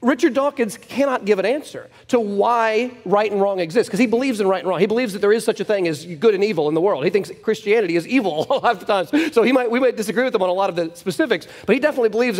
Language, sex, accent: English, male, American